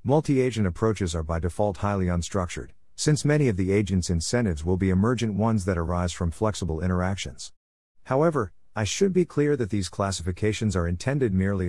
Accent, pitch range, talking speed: American, 90-115 Hz, 170 wpm